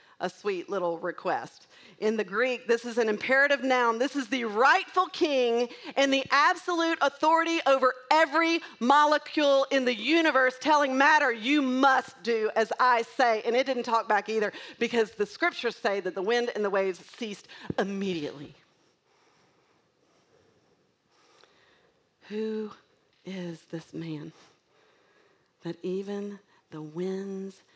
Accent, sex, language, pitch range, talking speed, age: American, female, English, 190-265 Hz, 130 wpm, 40-59